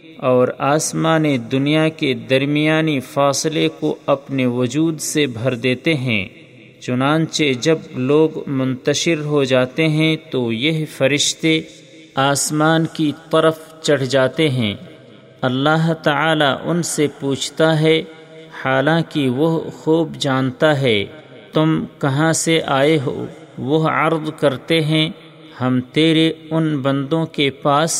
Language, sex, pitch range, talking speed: Urdu, male, 135-160 Hz, 120 wpm